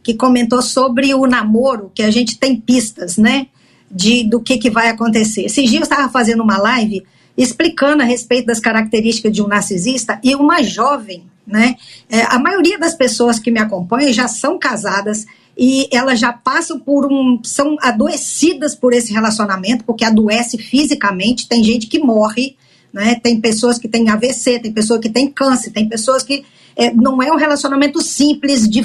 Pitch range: 230-275 Hz